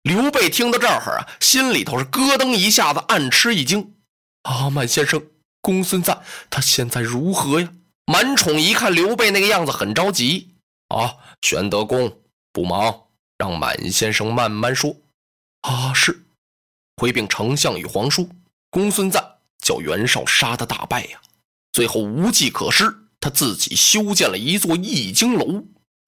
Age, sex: 20-39, male